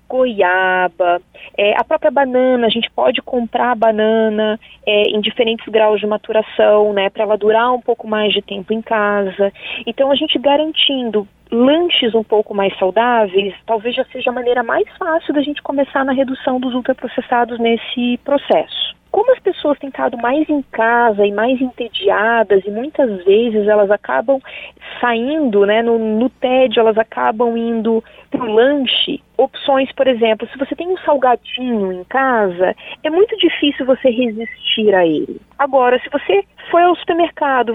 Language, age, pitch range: Portuguese, 30-49, 220-285 Hz